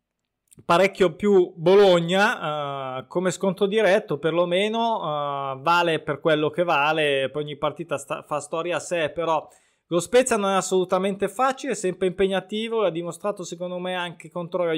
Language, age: Italian, 20-39